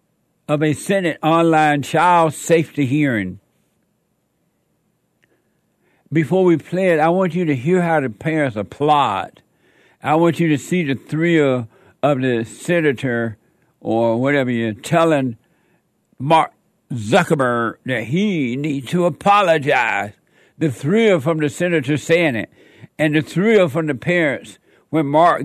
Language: English